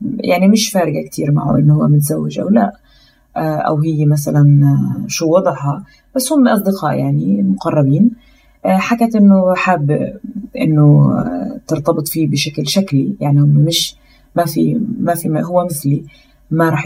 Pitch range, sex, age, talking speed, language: 150-200 Hz, female, 20-39, 140 wpm, Arabic